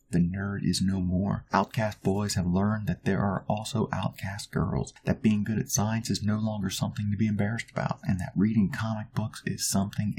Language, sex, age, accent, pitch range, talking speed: English, male, 30-49, American, 105-135 Hz, 205 wpm